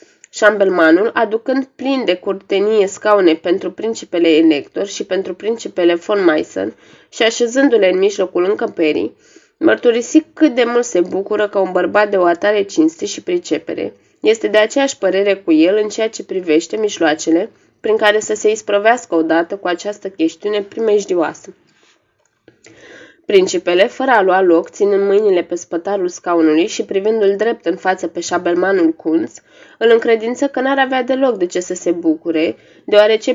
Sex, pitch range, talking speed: female, 180-230 Hz, 155 wpm